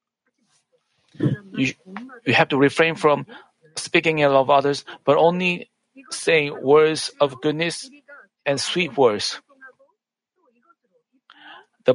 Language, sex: Korean, male